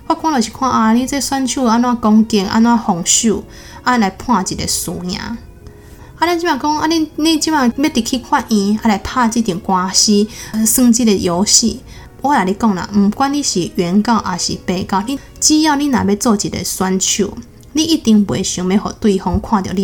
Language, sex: Chinese, female